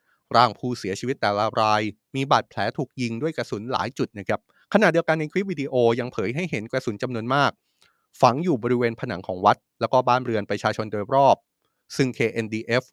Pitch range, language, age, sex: 110-140 Hz, Thai, 20-39, male